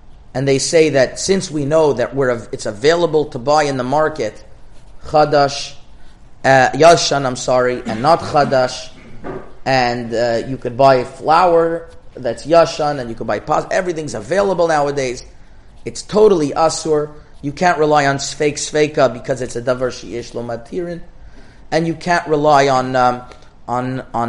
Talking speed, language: 160 wpm, English